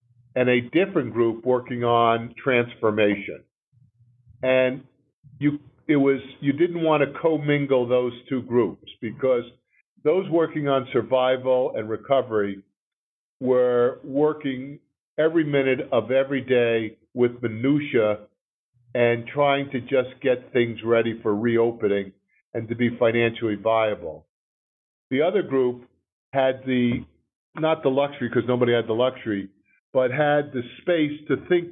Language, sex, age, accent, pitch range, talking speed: English, male, 50-69, American, 120-140 Hz, 125 wpm